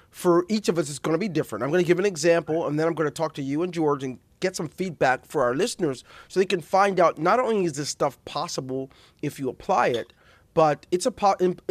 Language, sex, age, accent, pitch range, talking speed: English, male, 30-49, American, 130-170 Hz, 260 wpm